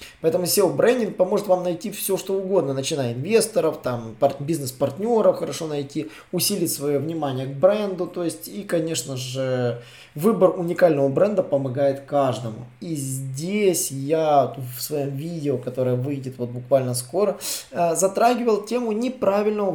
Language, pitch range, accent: Russian, 135-195 Hz, native